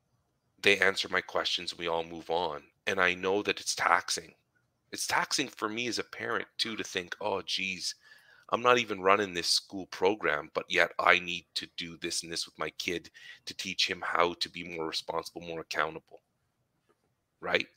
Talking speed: 190 wpm